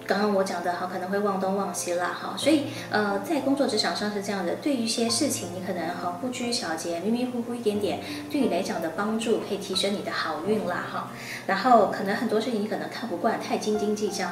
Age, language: 20-39, Chinese